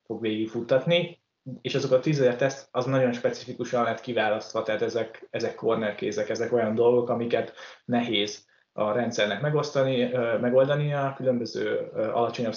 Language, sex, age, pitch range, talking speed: Hungarian, male, 20-39, 115-130 Hz, 135 wpm